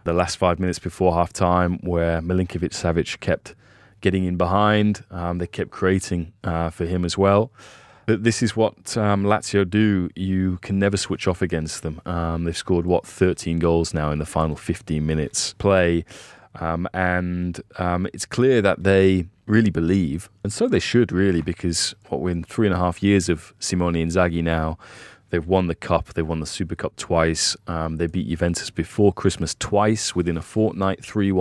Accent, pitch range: British, 85-100 Hz